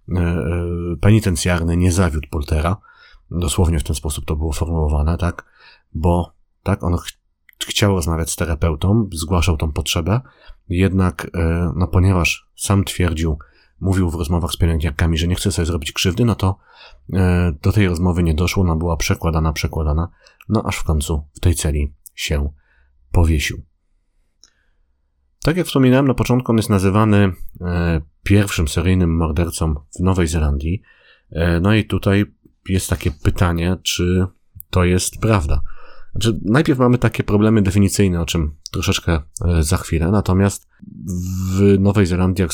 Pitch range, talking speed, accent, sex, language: 80-95 Hz, 140 wpm, native, male, Polish